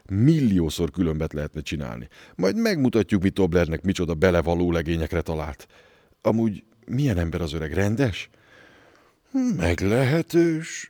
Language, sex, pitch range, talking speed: Hungarian, male, 80-110 Hz, 105 wpm